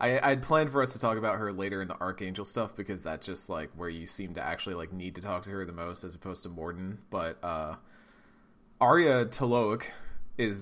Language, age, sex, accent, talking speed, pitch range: English, 30-49, male, American, 225 wpm, 95-130 Hz